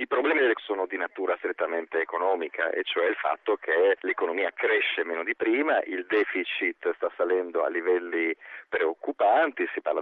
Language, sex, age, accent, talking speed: Italian, male, 40-59, native, 155 wpm